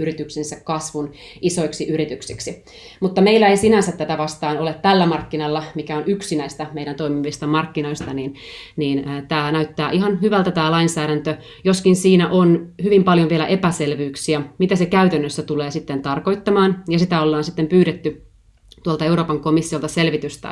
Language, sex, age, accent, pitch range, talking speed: Finnish, female, 30-49, native, 150-170 Hz, 145 wpm